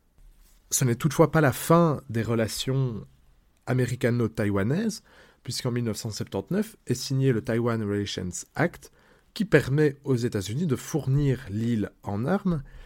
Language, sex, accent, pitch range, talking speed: French, male, French, 115-150 Hz, 120 wpm